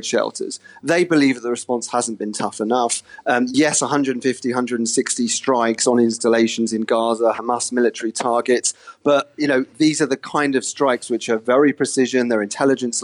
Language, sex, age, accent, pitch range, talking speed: English, male, 30-49, British, 115-135 Hz, 165 wpm